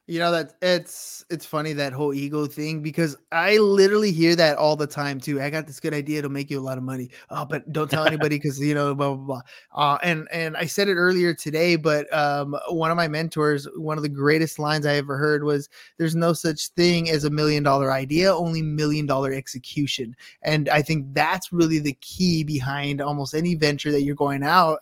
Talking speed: 225 wpm